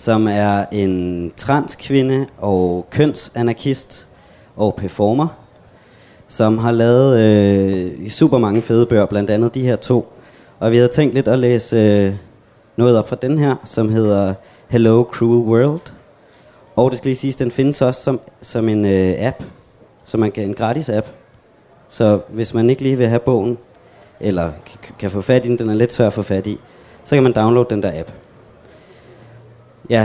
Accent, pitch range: native, 105-125 Hz